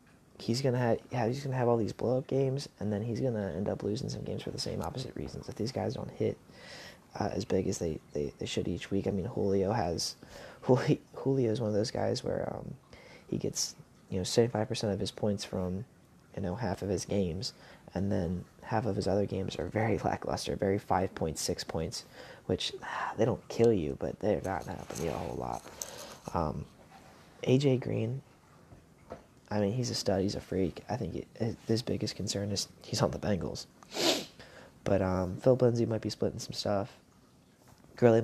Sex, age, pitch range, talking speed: male, 20-39, 95-115 Hz, 200 wpm